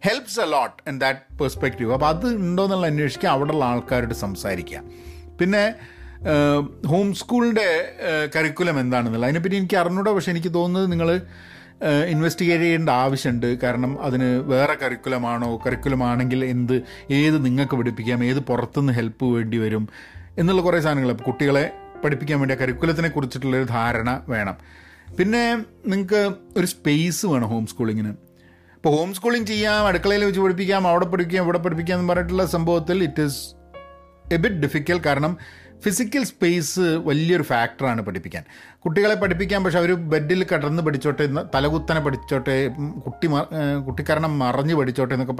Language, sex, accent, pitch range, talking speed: Malayalam, male, native, 125-175 Hz, 135 wpm